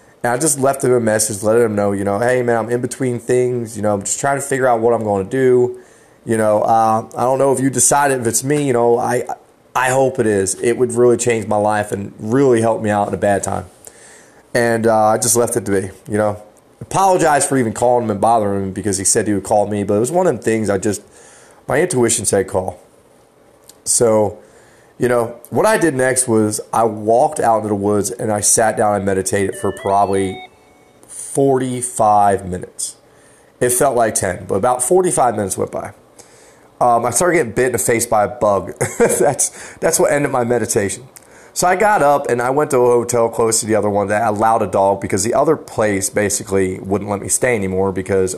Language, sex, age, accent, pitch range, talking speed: English, male, 30-49, American, 105-125 Hz, 225 wpm